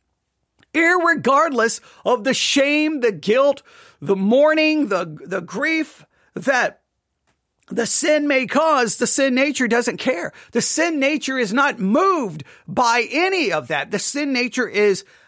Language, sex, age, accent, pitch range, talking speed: English, male, 40-59, American, 195-270 Hz, 135 wpm